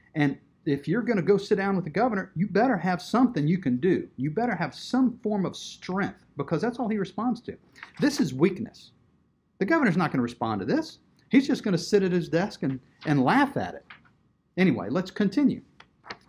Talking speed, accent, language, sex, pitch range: 205 wpm, American, English, male, 140-200 Hz